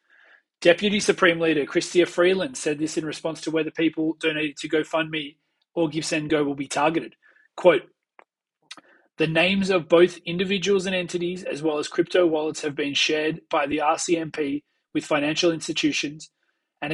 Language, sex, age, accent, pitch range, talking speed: English, male, 30-49, Australian, 155-180 Hz, 150 wpm